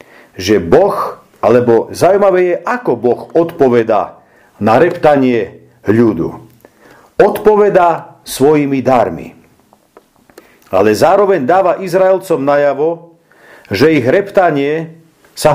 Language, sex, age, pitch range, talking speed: Slovak, male, 50-69, 140-190 Hz, 90 wpm